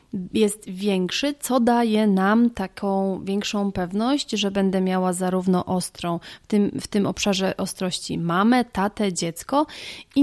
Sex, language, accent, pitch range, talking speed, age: female, Polish, native, 185-220 Hz, 135 wpm, 30-49